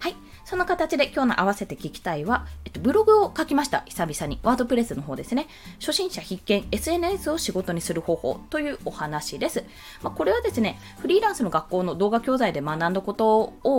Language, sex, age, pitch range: Japanese, female, 20-39, 170-255 Hz